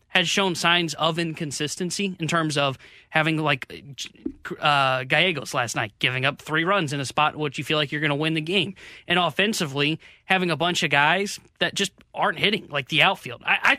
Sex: male